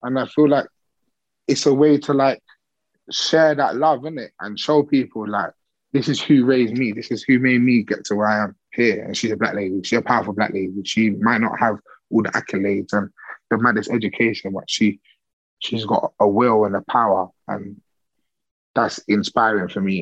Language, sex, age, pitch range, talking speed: English, male, 20-39, 105-135 Hz, 205 wpm